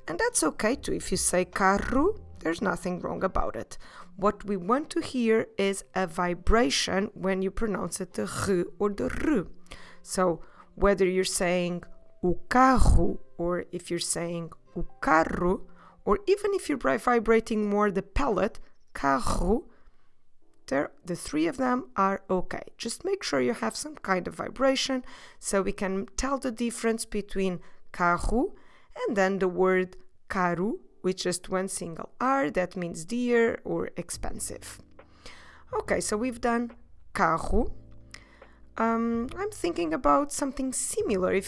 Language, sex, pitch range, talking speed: English, female, 180-245 Hz, 145 wpm